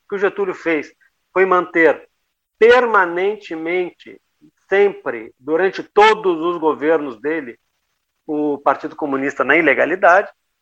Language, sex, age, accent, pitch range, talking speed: Portuguese, male, 50-69, Brazilian, 135-185 Hz, 105 wpm